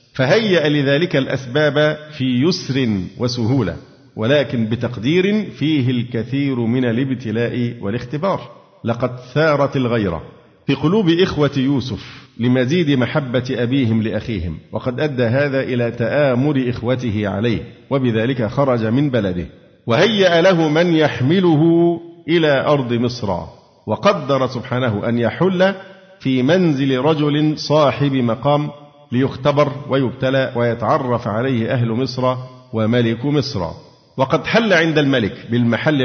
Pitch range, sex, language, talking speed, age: 115-150 Hz, male, Arabic, 105 wpm, 50-69